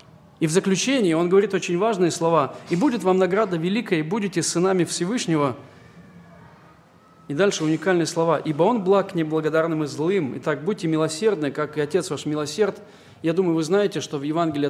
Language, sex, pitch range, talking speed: Russian, male, 155-190 Hz, 170 wpm